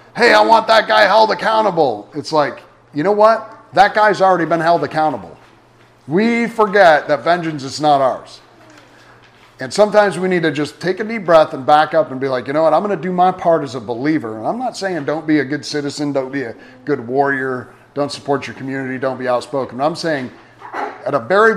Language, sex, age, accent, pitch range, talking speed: English, male, 40-59, American, 135-180 Hz, 220 wpm